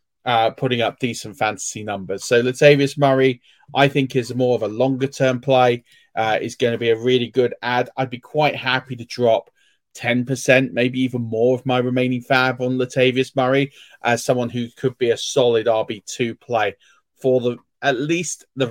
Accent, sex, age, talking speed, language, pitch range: British, male, 30-49, 185 wpm, English, 120-140 Hz